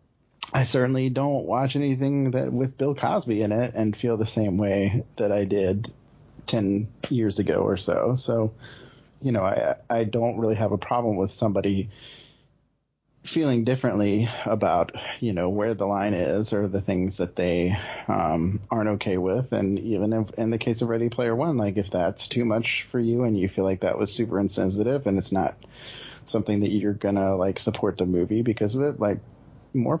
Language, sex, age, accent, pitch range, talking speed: English, male, 30-49, American, 100-125 Hz, 190 wpm